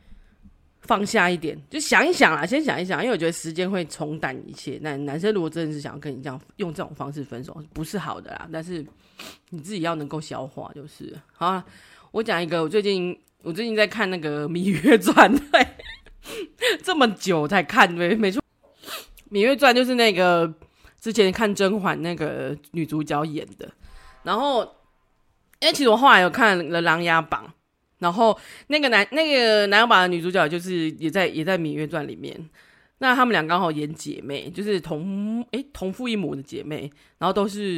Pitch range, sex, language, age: 160-235 Hz, female, Chinese, 20-39